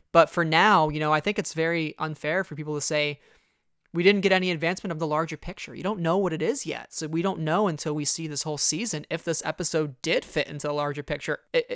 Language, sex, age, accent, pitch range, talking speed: English, male, 20-39, American, 150-175 Hz, 255 wpm